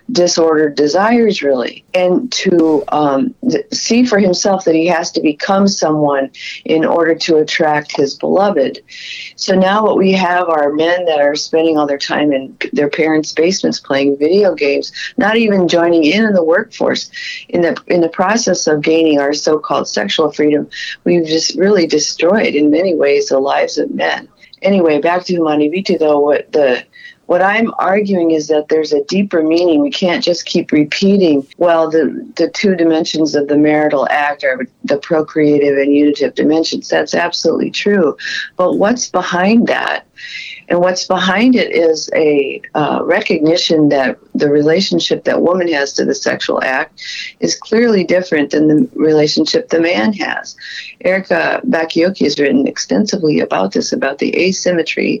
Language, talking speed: English, 160 wpm